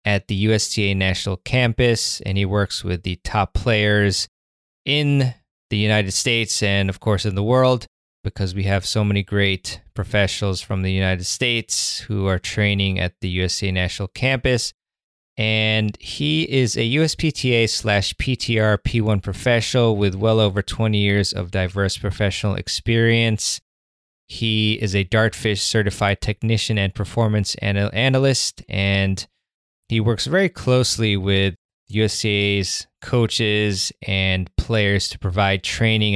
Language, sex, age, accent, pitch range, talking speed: English, male, 20-39, American, 95-115 Hz, 135 wpm